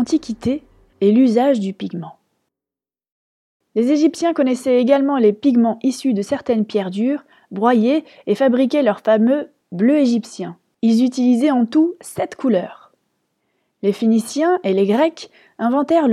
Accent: French